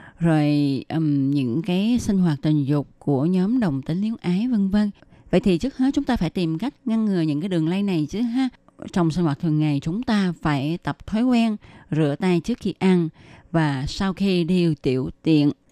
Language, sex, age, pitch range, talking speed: Vietnamese, female, 20-39, 155-205 Hz, 215 wpm